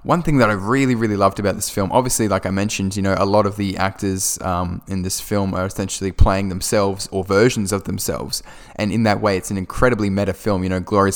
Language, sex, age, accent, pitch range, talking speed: English, male, 10-29, Australian, 95-105 Hz, 240 wpm